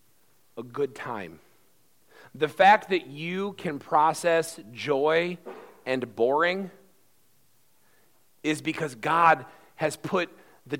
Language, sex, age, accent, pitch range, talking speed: English, male, 40-59, American, 130-165 Hz, 100 wpm